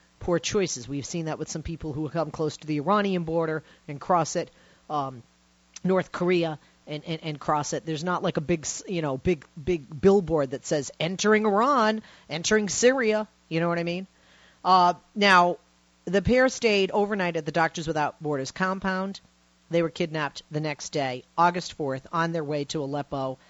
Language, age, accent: English, 40-59, American